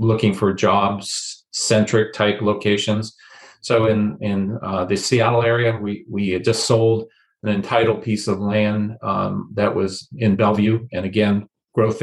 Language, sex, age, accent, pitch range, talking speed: English, male, 40-59, American, 100-115 Hz, 155 wpm